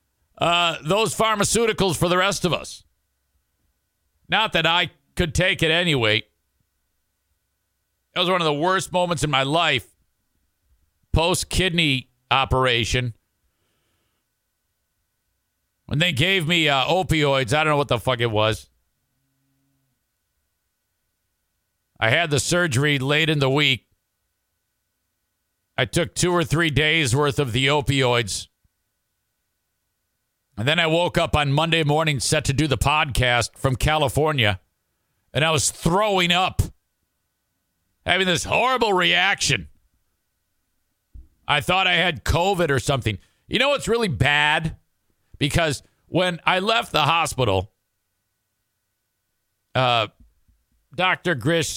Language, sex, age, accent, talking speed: English, male, 50-69, American, 120 wpm